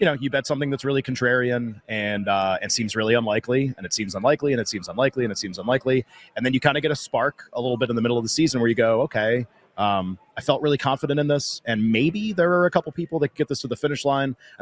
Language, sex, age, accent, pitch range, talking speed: English, male, 30-49, American, 115-145 Hz, 285 wpm